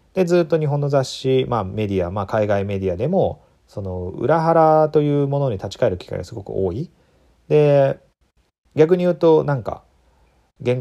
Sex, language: male, Japanese